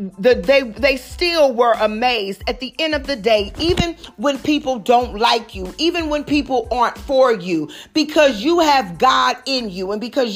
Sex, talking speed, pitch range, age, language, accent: female, 180 wpm, 215-290 Hz, 40-59, English, American